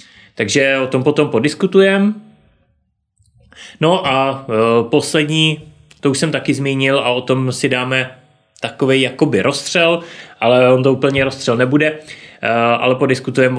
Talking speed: 130 wpm